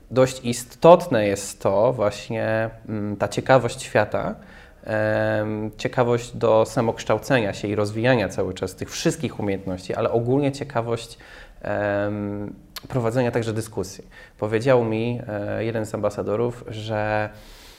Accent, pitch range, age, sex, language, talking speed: native, 105-130 Hz, 20-39, male, Polish, 105 wpm